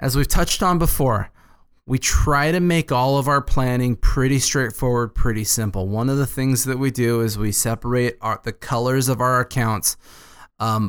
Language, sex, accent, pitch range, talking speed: English, male, American, 110-135 Hz, 185 wpm